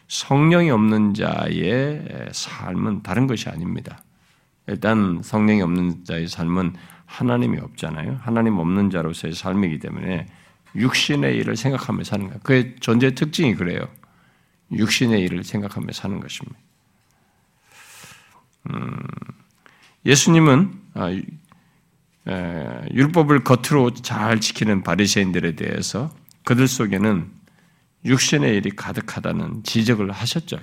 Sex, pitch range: male, 100-155 Hz